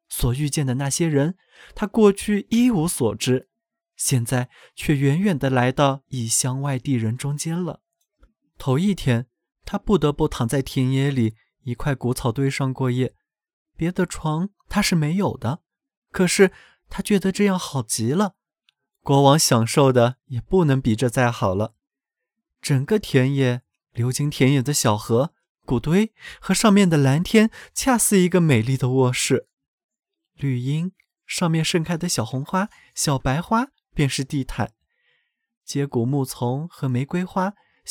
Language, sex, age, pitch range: Chinese, male, 20-39, 130-185 Hz